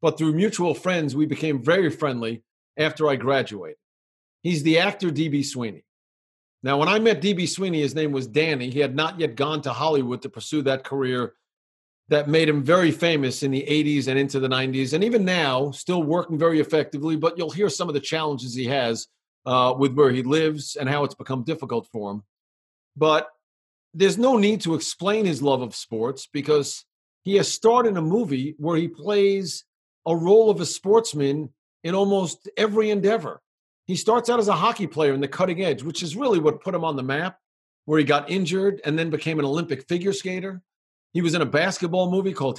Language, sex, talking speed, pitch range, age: English, male, 205 wpm, 140-195 Hz, 40-59